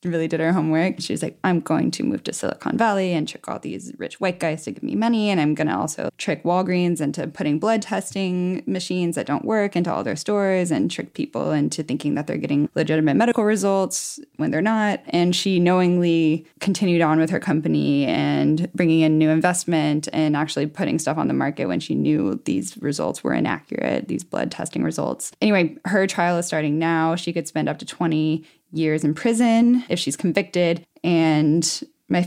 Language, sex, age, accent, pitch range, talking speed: English, female, 10-29, American, 165-205 Hz, 200 wpm